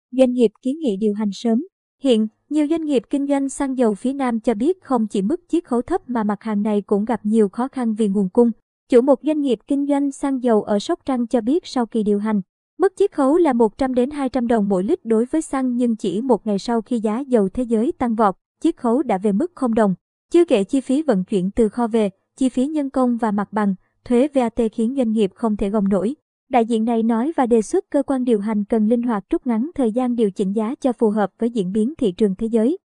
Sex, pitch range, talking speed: male, 215-270 Hz, 255 wpm